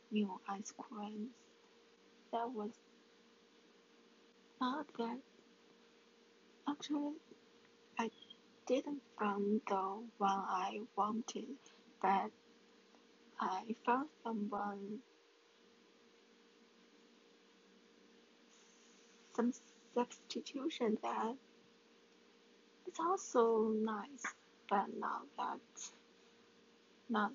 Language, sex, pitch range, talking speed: English, female, 210-245 Hz, 65 wpm